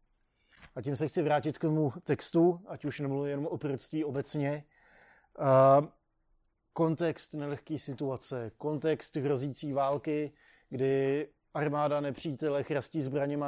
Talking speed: 115 wpm